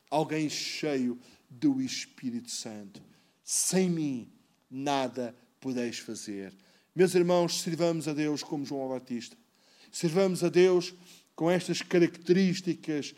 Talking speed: 110 wpm